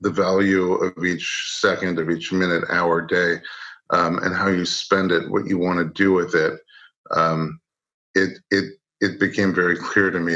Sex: male